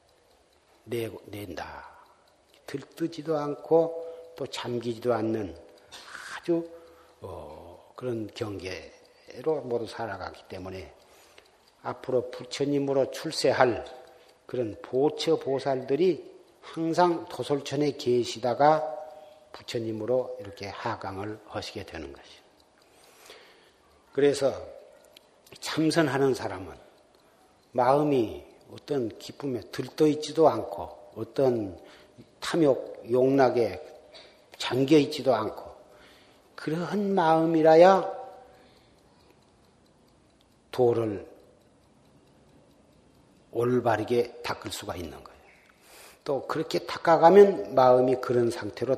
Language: Korean